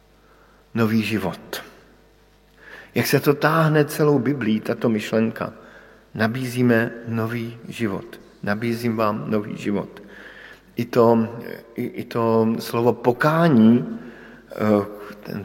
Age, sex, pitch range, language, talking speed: 50-69, male, 110-130 Hz, Slovak, 95 wpm